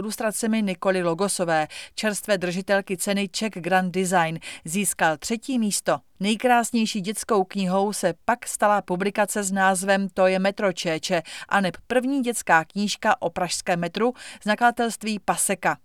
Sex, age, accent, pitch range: female, 30-49, native, 190-225 Hz